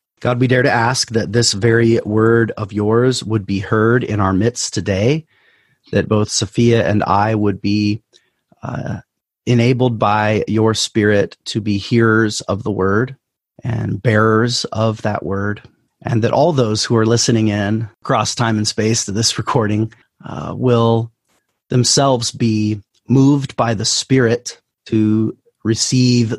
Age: 30-49